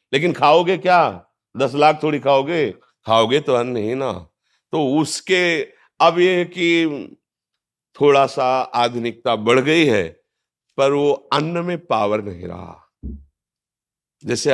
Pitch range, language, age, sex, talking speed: 120-150 Hz, Hindi, 50-69, male, 130 wpm